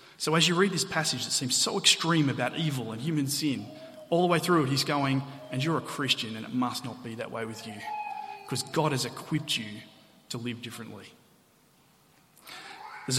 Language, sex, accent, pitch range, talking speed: English, male, Australian, 130-170 Hz, 200 wpm